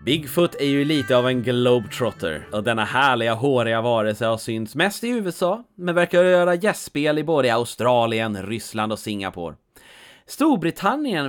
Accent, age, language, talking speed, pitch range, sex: Swedish, 30-49, English, 150 wpm, 115-180 Hz, male